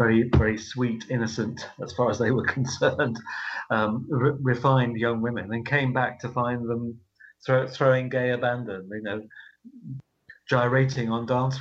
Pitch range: 110-130 Hz